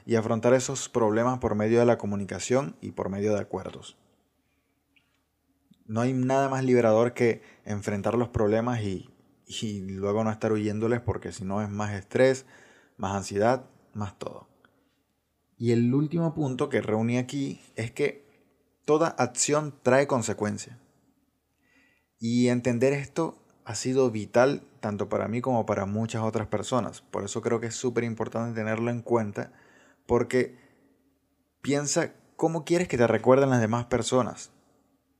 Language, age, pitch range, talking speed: Spanish, 20-39, 105-130 Hz, 145 wpm